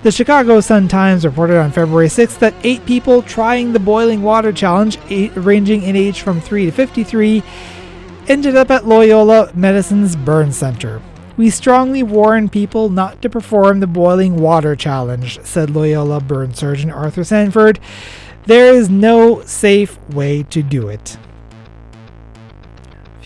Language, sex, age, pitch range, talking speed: English, male, 30-49, 155-215 Hz, 140 wpm